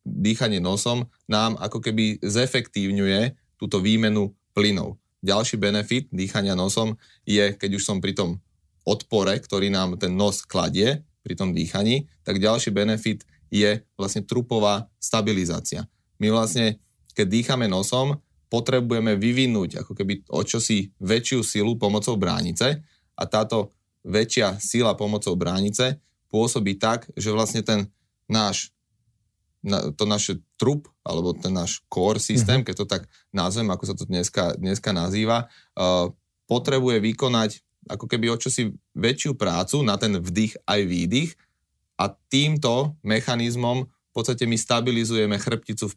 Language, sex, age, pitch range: Slovak, male, 30-49, 100-115 Hz